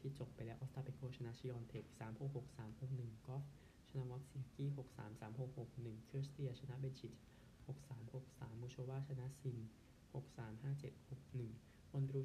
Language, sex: Thai, male